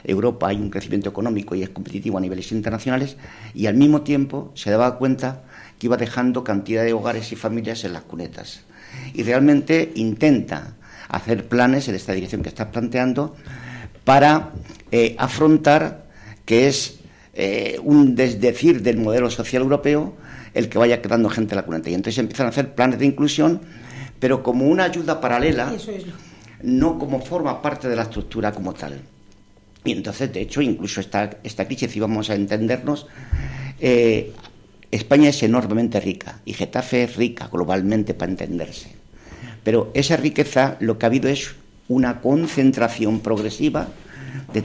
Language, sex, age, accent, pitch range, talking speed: Spanish, male, 50-69, Spanish, 110-135 Hz, 160 wpm